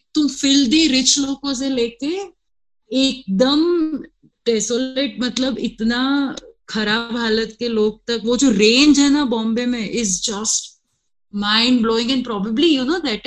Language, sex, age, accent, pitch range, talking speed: Hindi, female, 30-49, native, 205-250 Hz, 135 wpm